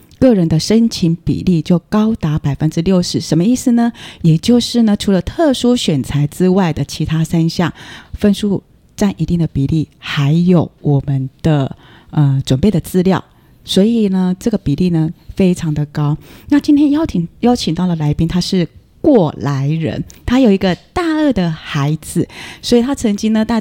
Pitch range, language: 155-220 Hz, Chinese